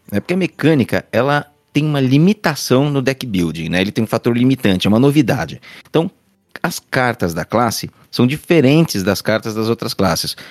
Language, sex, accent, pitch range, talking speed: Portuguese, male, Brazilian, 105-145 Hz, 175 wpm